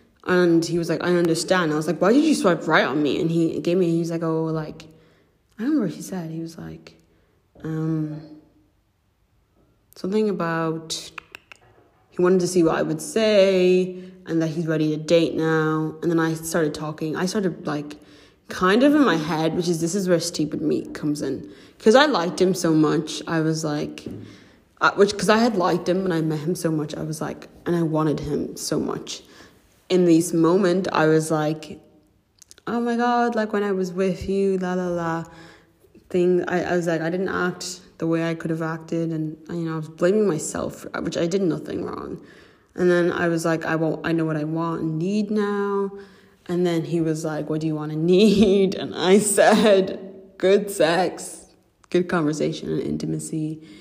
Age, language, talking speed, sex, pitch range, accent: 20-39, English, 205 wpm, female, 155-185 Hz, British